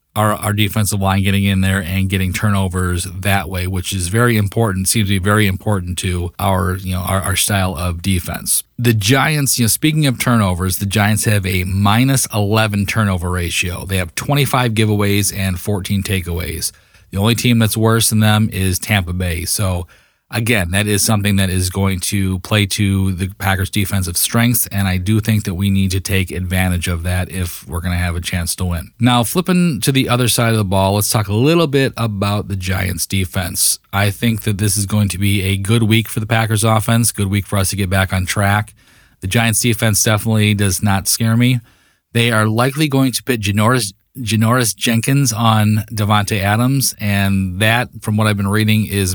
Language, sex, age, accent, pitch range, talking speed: English, male, 30-49, American, 95-110 Hz, 205 wpm